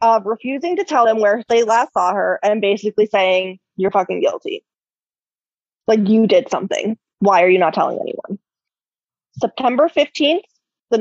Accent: American